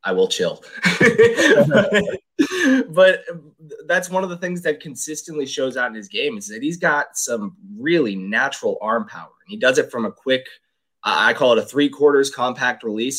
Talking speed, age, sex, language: 180 wpm, 20-39, male, English